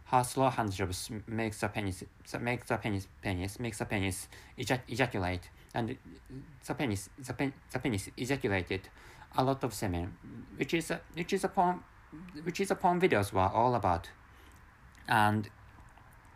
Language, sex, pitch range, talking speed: English, male, 100-145 Hz, 160 wpm